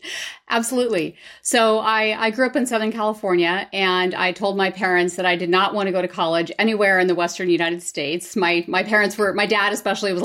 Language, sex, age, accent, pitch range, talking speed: English, female, 30-49, American, 175-210 Hz, 215 wpm